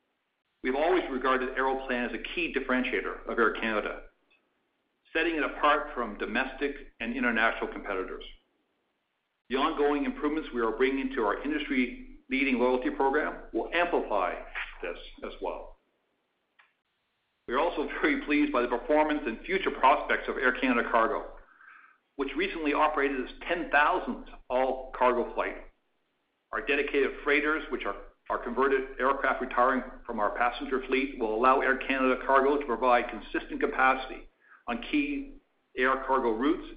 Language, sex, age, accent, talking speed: English, male, 60-79, American, 140 wpm